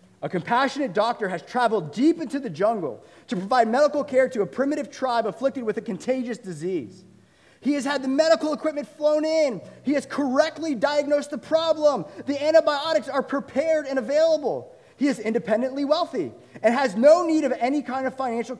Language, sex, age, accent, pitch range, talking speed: English, male, 30-49, American, 190-290 Hz, 175 wpm